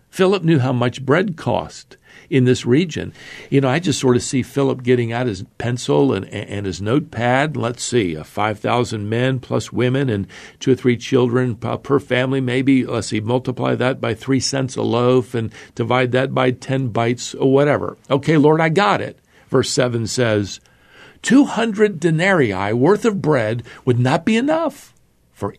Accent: American